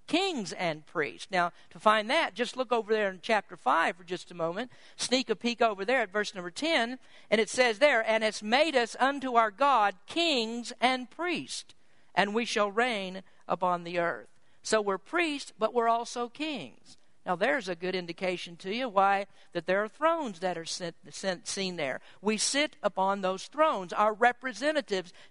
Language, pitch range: English, 185-240 Hz